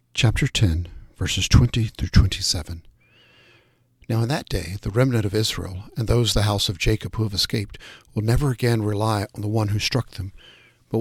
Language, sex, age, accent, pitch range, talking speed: English, male, 60-79, American, 105-125 Hz, 185 wpm